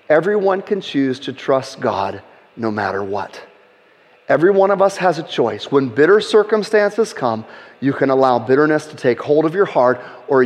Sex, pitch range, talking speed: male, 135-180 Hz, 180 wpm